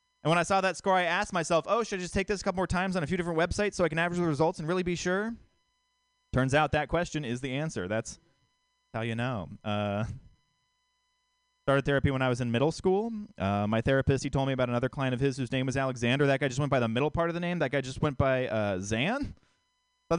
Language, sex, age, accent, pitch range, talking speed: English, male, 20-39, American, 130-210 Hz, 265 wpm